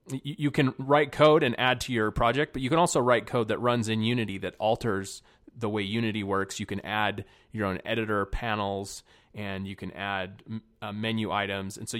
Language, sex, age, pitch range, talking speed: English, male, 30-49, 100-120 Hz, 205 wpm